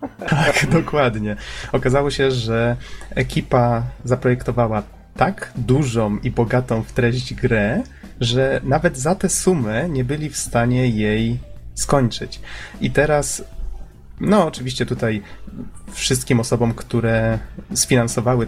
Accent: native